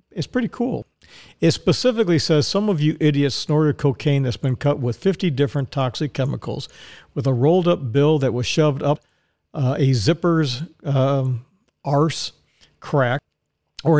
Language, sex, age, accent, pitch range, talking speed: English, male, 50-69, American, 130-165 Hz, 150 wpm